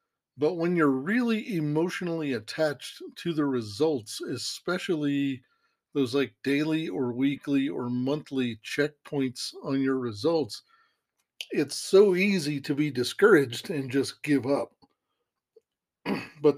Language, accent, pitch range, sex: English, American, 135-160 Hz, male